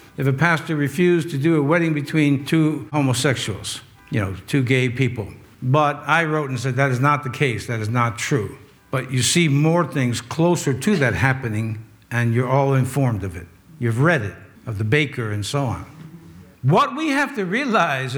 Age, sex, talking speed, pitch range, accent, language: 60-79, male, 195 wpm, 125-175 Hz, American, English